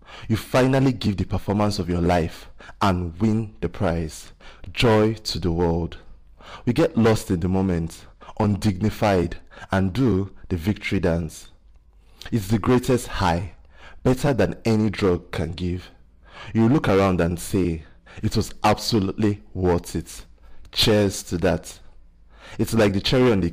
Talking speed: 145 wpm